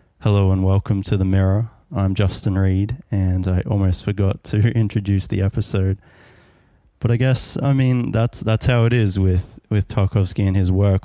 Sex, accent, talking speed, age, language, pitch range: male, Australian, 180 wpm, 20-39, English, 95-110 Hz